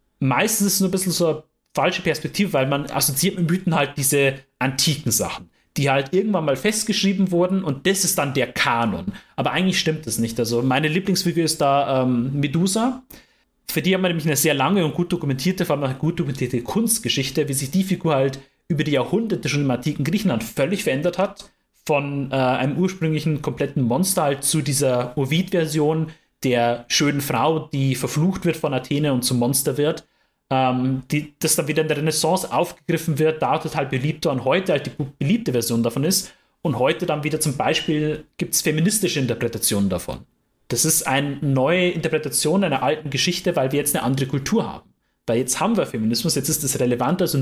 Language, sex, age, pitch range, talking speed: German, male, 30-49, 135-175 Hz, 195 wpm